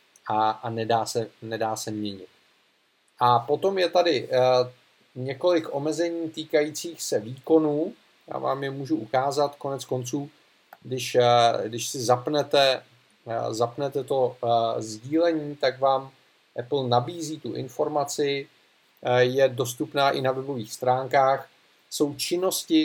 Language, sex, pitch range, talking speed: Czech, male, 120-145 Hz, 110 wpm